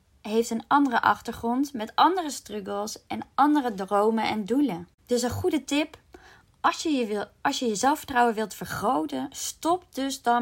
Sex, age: female, 20-39